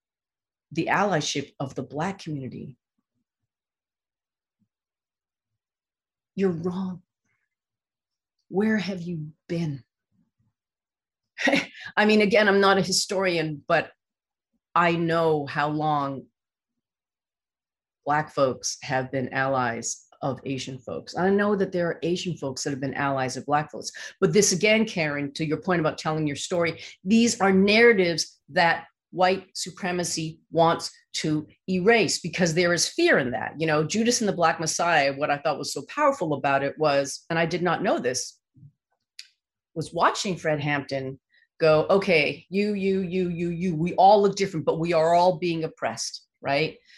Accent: American